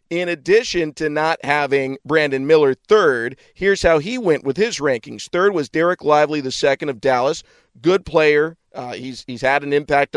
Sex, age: male, 40-59